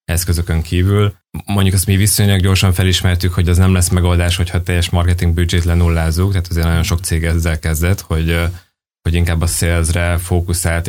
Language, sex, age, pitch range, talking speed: Hungarian, male, 20-39, 85-95 Hz, 165 wpm